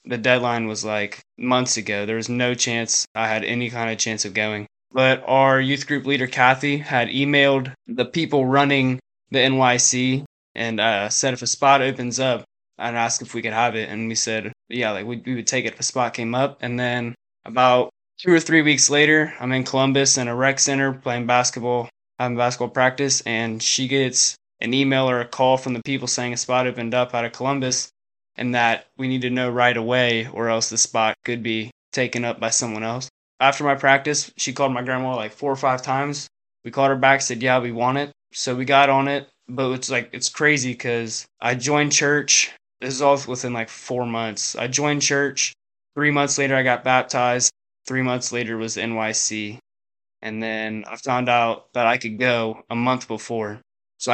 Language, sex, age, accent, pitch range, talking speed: English, male, 20-39, American, 115-135 Hz, 210 wpm